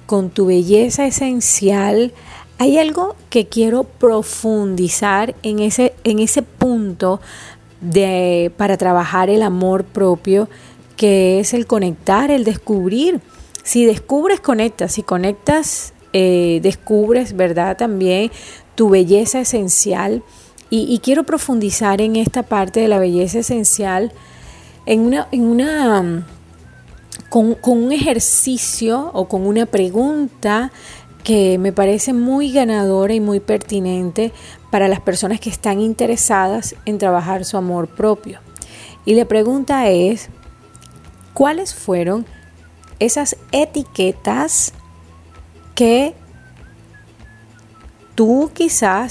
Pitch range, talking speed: 185-240 Hz, 110 wpm